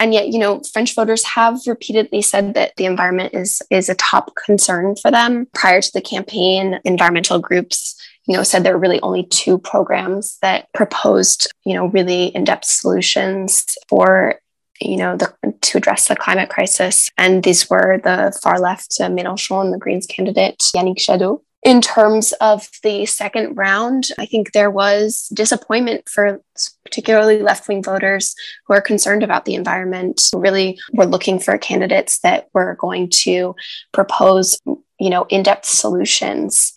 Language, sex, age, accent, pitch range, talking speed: English, female, 10-29, American, 185-215 Hz, 160 wpm